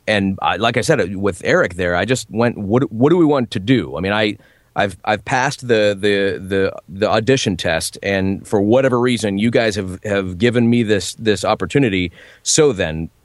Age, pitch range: 30-49, 100-125 Hz